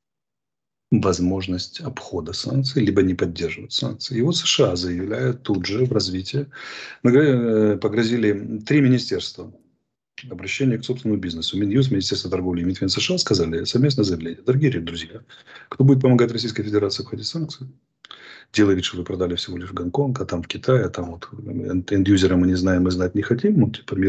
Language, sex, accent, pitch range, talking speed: Russian, male, native, 95-130 Hz, 160 wpm